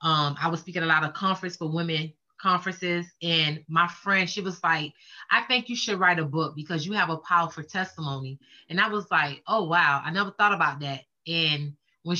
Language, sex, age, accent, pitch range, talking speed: English, female, 20-39, American, 160-195 Hz, 215 wpm